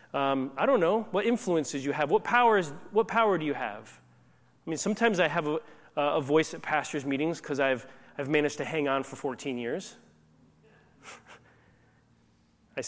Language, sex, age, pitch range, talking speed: English, male, 30-49, 130-195 Hz, 170 wpm